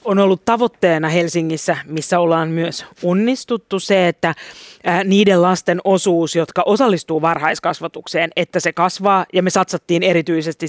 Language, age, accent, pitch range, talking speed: Finnish, 30-49, native, 170-195 Hz, 130 wpm